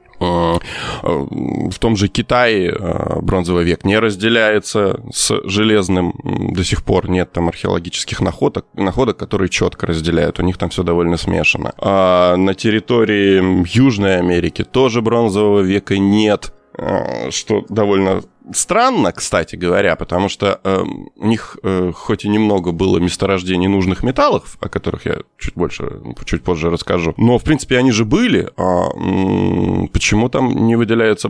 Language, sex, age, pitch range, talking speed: Russian, male, 20-39, 90-115 Hz, 135 wpm